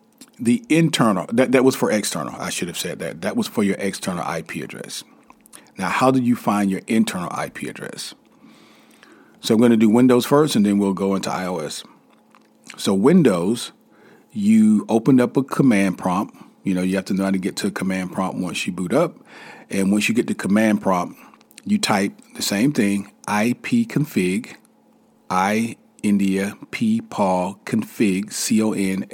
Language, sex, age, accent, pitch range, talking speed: English, male, 40-59, American, 95-155 Hz, 175 wpm